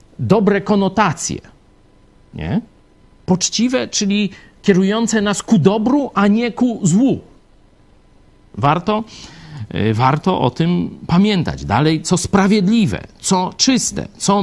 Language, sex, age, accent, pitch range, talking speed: Polish, male, 50-69, native, 135-190 Hz, 95 wpm